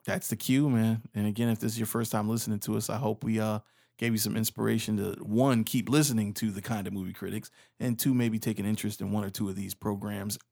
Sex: male